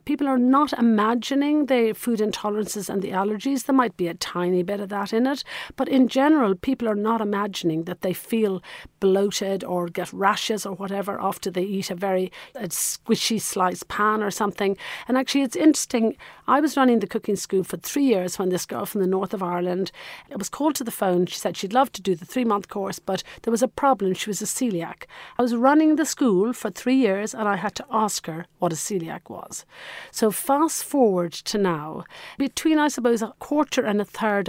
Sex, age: female, 40-59